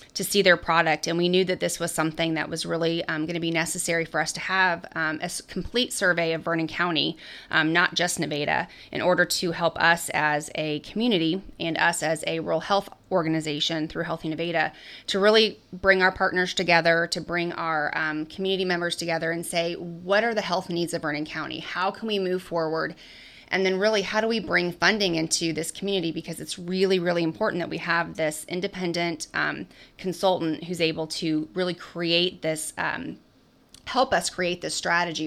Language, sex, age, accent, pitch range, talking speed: English, female, 20-39, American, 165-185 Hz, 195 wpm